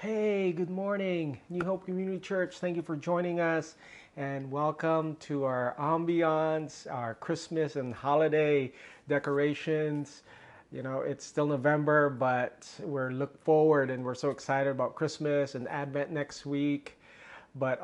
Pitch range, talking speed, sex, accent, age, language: 135-160 Hz, 140 wpm, male, American, 30-49, English